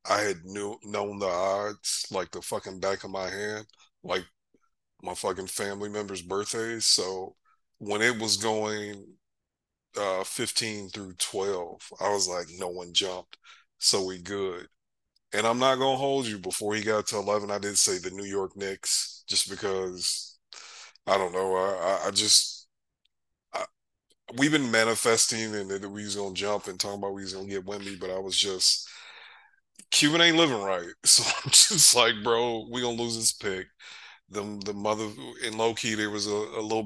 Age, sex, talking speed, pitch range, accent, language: 30-49, male, 185 wpm, 100-110 Hz, American, English